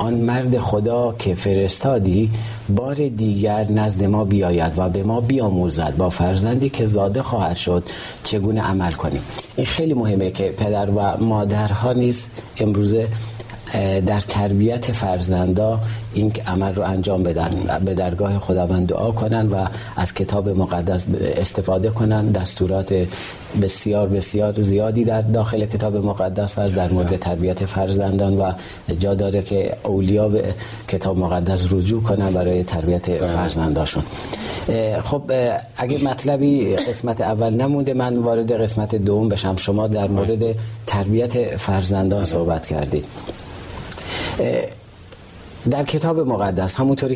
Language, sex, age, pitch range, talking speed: Persian, male, 40-59, 95-110 Hz, 125 wpm